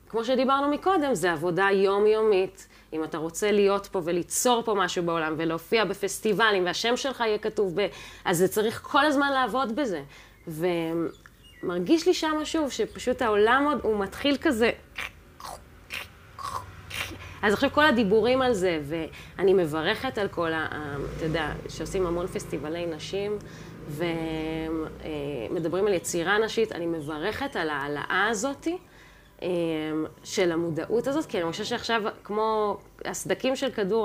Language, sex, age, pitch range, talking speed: Hebrew, female, 20-39, 165-230 Hz, 130 wpm